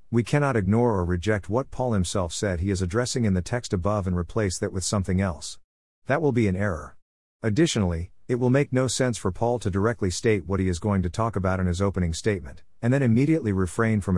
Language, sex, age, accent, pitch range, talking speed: English, male, 50-69, American, 90-115 Hz, 230 wpm